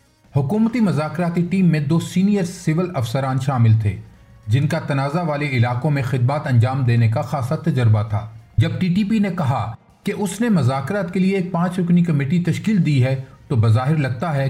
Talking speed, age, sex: 190 wpm, 40-59, male